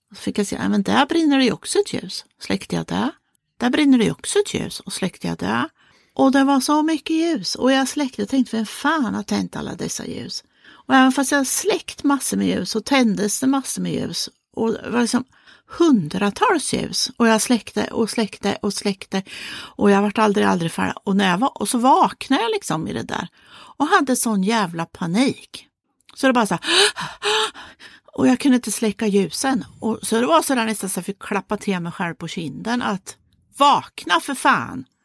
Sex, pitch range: female, 195-270 Hz